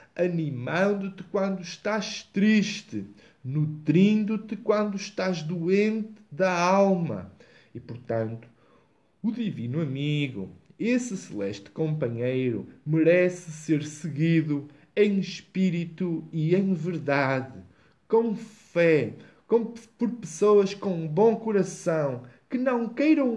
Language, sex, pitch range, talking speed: Portuguese, male, 140-210 Hz, 100 wpm